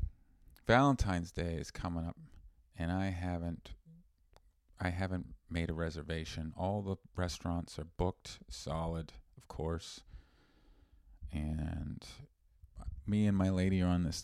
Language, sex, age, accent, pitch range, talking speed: English, male, 40-59, American, 80-95 Hz, 120 wpm